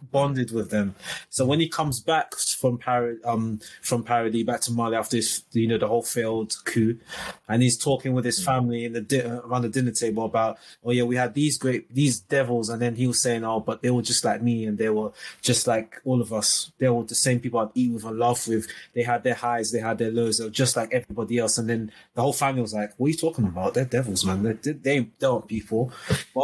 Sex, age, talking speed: male, 20-39, 255 wpm